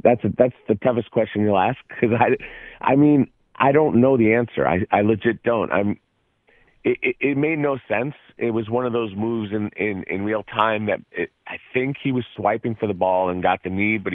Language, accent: English, American